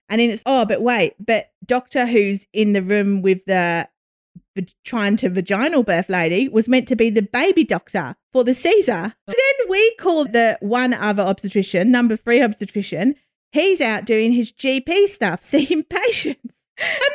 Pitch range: 190-250 Hz